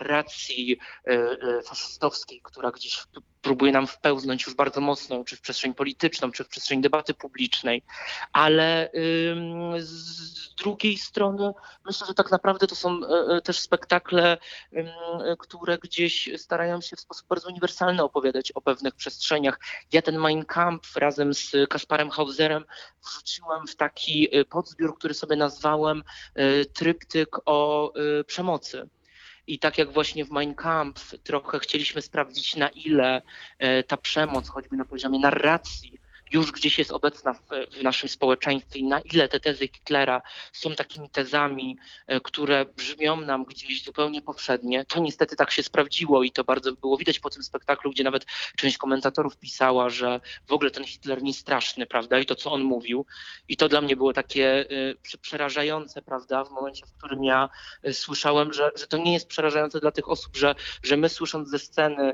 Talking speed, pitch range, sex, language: 155 wpm, 135-160 Hz, male, Polish